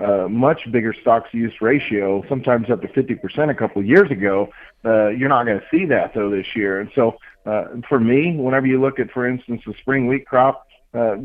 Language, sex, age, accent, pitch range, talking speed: English, male, 40-59, American, 105-130 Hz, 225 wpm